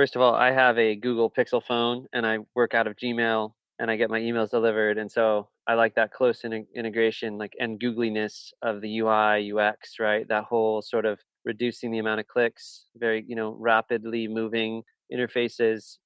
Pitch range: 110-120 Hz